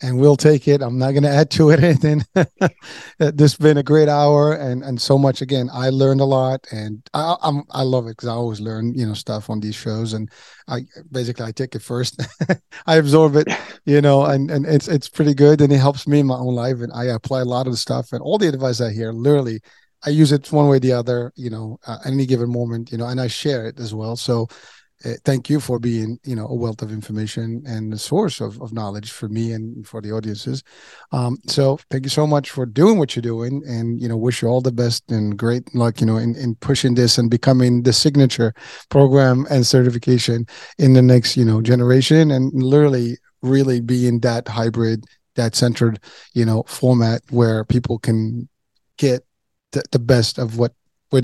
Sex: male